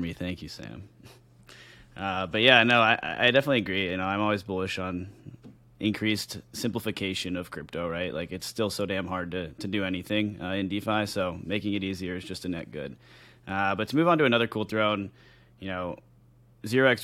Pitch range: 95-110 Hz